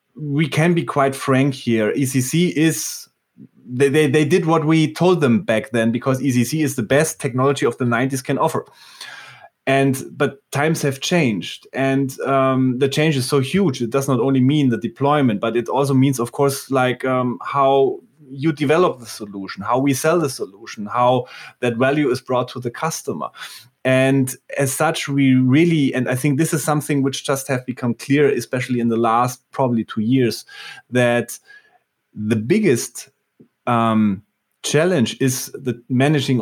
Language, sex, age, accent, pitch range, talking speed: English, male, 30-49, German, 125-145 Hz, 175 wpm